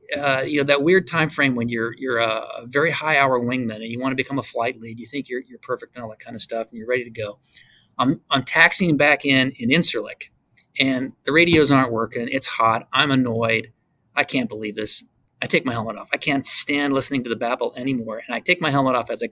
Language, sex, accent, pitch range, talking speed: English, male, American, 120-170 Hz, 250 wpm